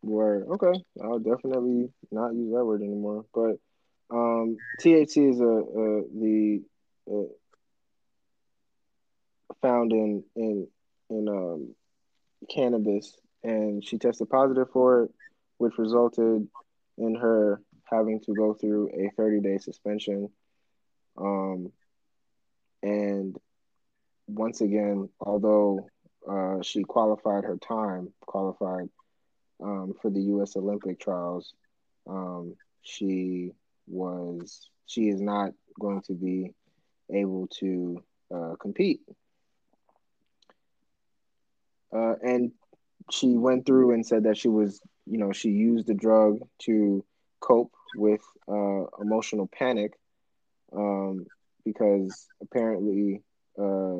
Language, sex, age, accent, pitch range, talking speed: English, male, 20-39, American, 100-115 Hz, 110 wpm